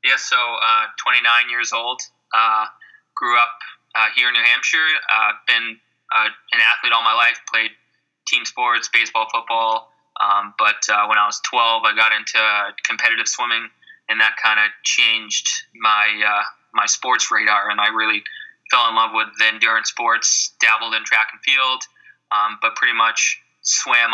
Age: 20-39